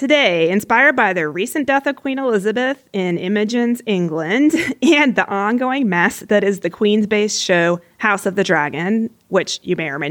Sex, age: female, 30-49